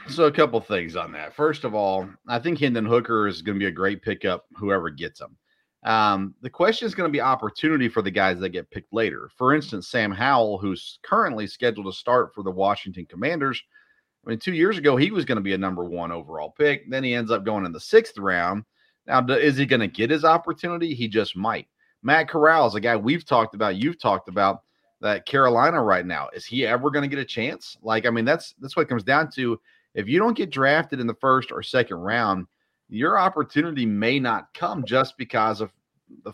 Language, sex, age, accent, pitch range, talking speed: English, male, 40-59, American, 105-150 Hz, 230 wpm